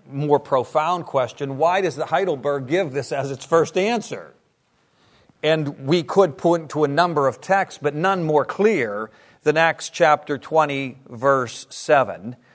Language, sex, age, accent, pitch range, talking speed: English, male, 50-69, American, 145-185 Hz, 155 wpm